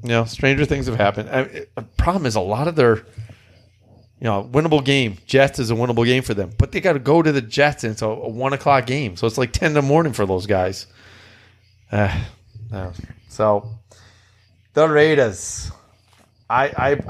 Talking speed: 195 wpm